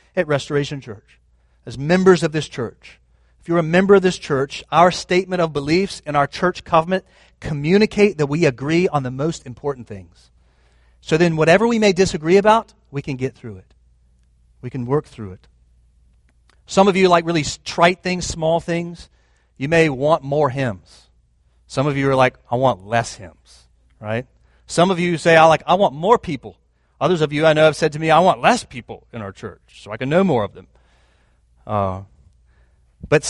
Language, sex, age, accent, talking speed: English, male, 40-59, American, 195 wpm